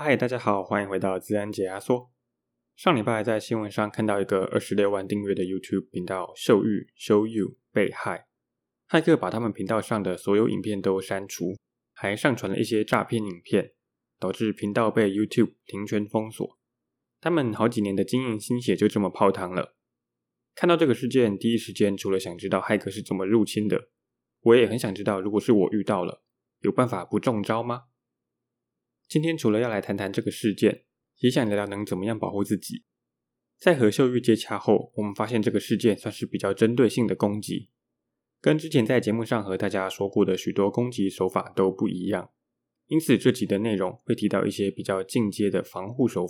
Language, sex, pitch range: Chinese, male, 100-115 Hz